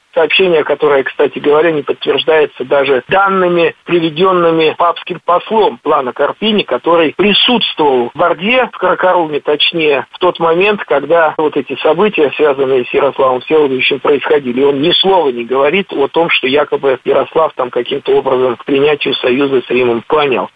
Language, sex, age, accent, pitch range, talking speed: Russian, male, 50-69, native, 155-225 Hz, 150 wpm